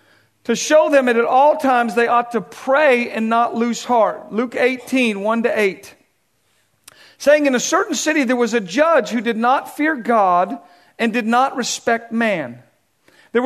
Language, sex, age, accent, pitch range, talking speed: English, male, 40-59, American, 215-270 Hz, 170 wpm